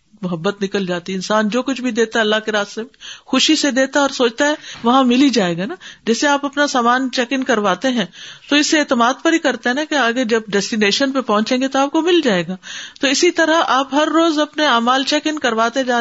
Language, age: English, 50-69